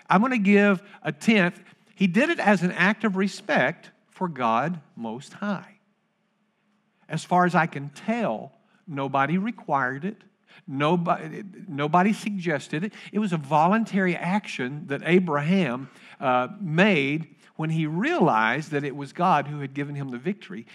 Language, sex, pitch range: English, male, 150-205 Hz